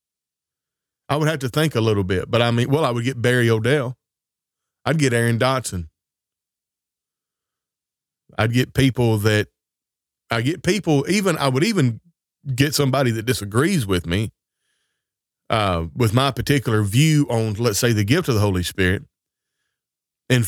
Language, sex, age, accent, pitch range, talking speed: English, male, 30-49, American, 105-130 Hz, 155 wpm